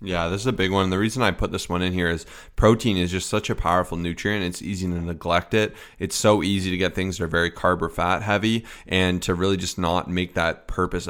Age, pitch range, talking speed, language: 20-39, 90-100 Hz, 260 wpm, English